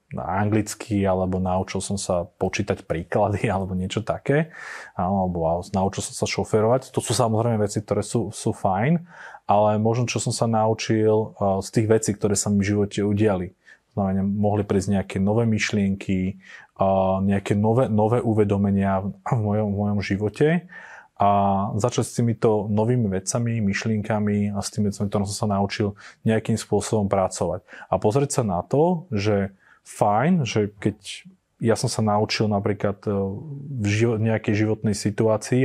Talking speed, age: 150 wpm, 30-49